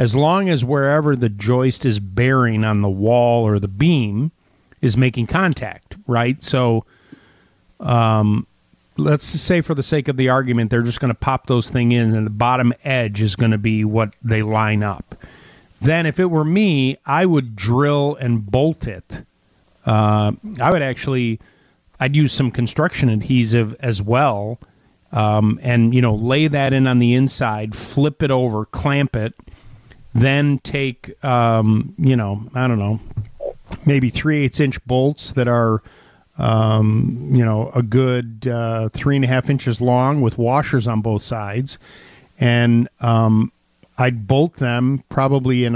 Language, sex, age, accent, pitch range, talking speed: English, male, 40-59, American, 115-140 Hz, 165 wpm